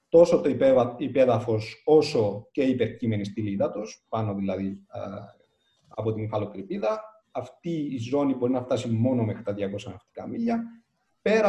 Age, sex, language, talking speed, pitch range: 30-49, male, Greek, 140 wpm, 110-155 Hz